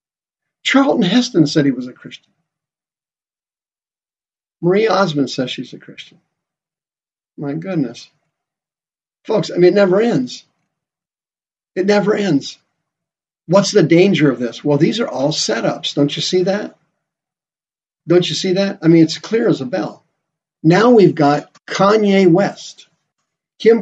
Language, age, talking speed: English, 50-69, 140 wpm